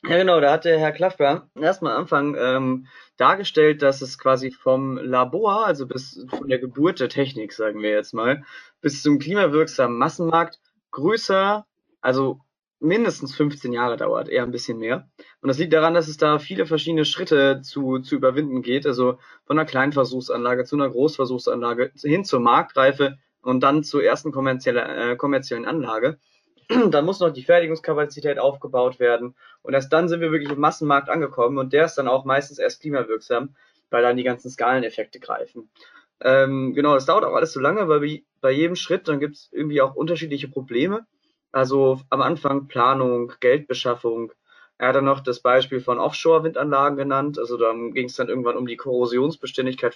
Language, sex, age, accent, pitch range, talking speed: German, male, 20-39, German, 130-155 Hz, 175 wpm